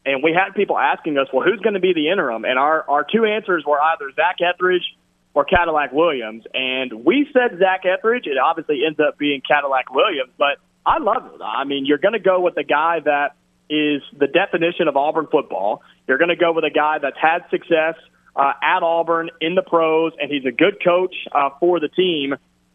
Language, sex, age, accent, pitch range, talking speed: English, male, 30-49, American, 140-175 Hz, 215 wpm